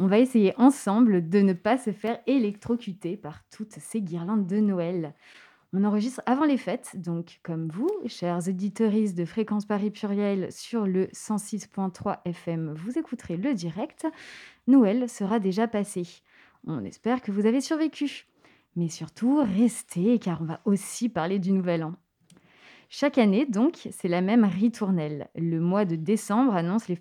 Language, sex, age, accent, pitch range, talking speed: French, female, 20-39, French, 175-235 Hz, 160 wpm